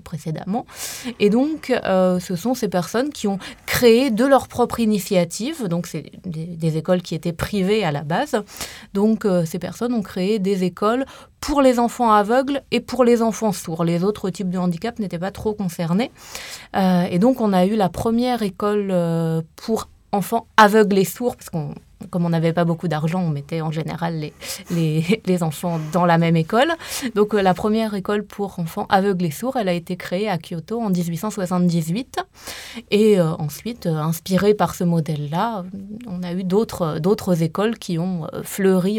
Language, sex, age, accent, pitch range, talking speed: French, female, 20-39, French, 170-215 Hz, 185 wpm